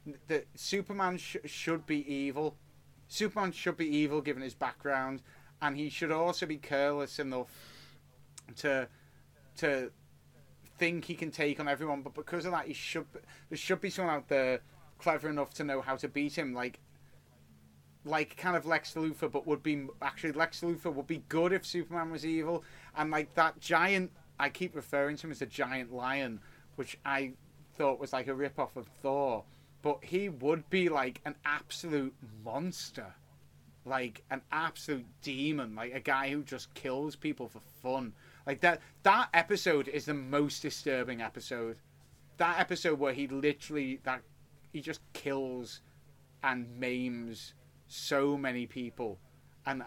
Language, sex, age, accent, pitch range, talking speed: English, male, 30-49, British, 130-160 Hz, 165 wpm